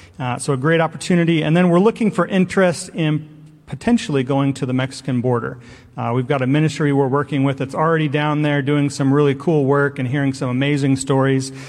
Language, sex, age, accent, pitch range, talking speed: English, male, 40-59, American, 135-180 Hz, 205 wpm